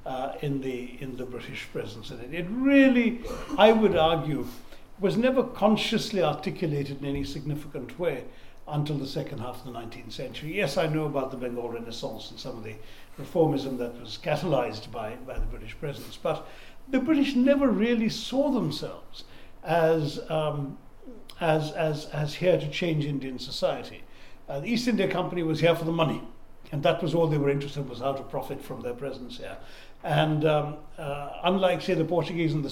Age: 60-79